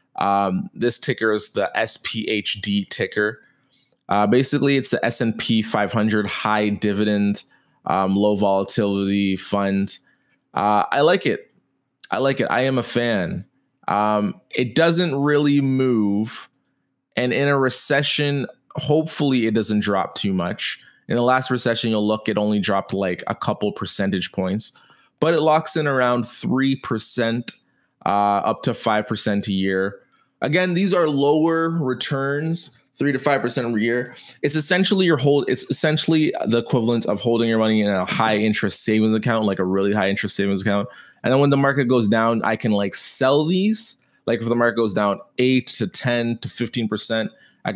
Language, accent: English, American